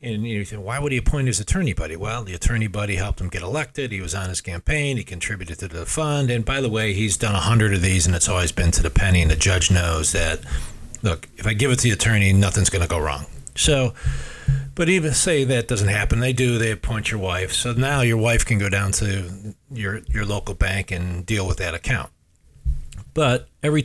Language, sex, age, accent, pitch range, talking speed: English, male, 40-59, American, 95-125 Hz, 235 wpm